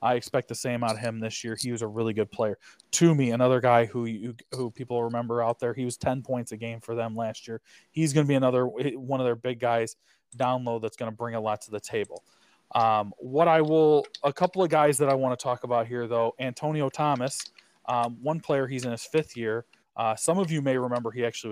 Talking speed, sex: 255 wpm, male